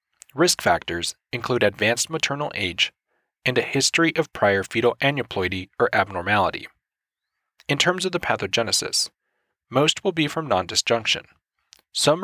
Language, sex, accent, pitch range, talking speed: English, male, American, 110-150 Hz, 125 wpm